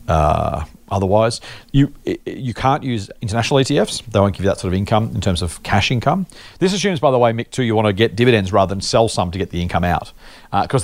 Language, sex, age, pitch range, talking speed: English, male, 40-59, 90-115 Hz, 240 wpm